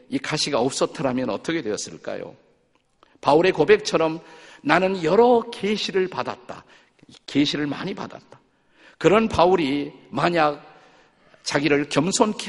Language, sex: Korean, male